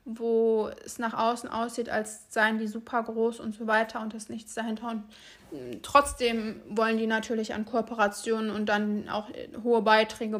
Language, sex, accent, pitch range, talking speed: German, female, German, 220-245 Hz, 165 wpm